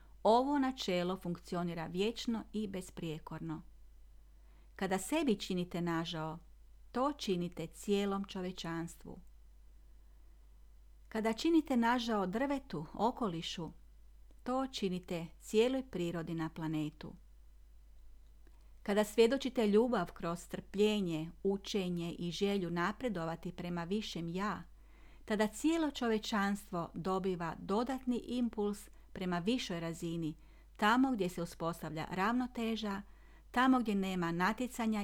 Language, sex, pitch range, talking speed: Croatian, female, 160-210 Hz, 95 wpm